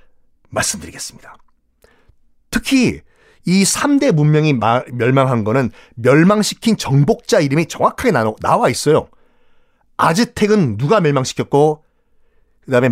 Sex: male